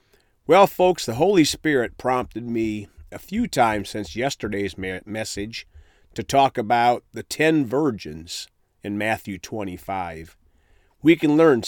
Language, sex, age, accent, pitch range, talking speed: English, male, 40-59, American, 100-130 Hz, 135 wpm